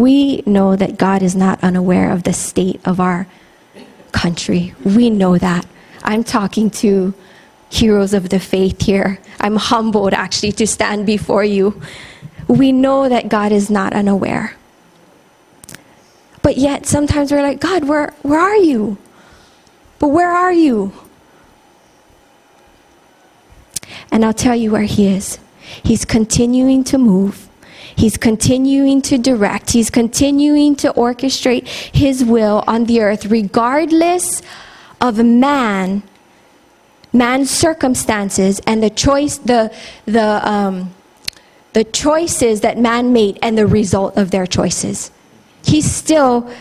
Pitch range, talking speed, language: 200-270 Hz, 130 wpm, English